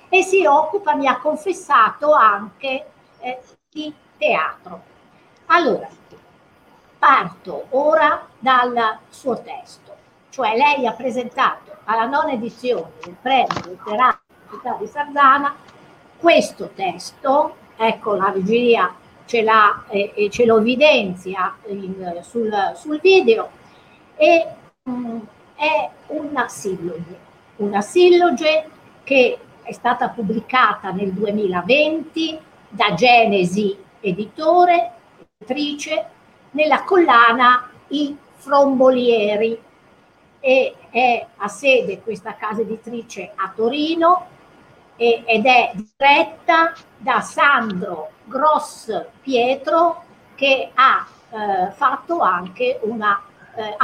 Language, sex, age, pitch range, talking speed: Italian, female, 60-79, 215-305 Hz, 95 wpm